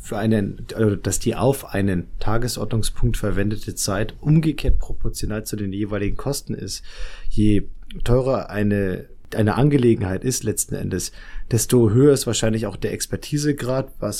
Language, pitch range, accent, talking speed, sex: German, 100-125 Hz, German, 140 wpm, male